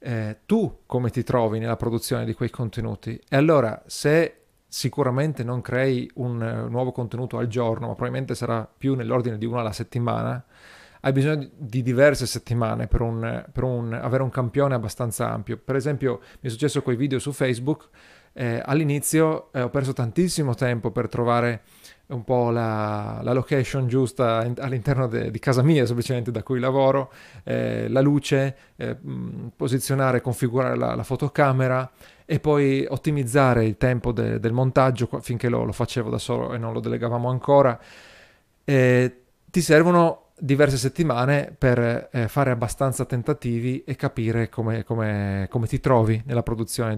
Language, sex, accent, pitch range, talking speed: Italian, male, native, 115-135 Hz, 155 wpm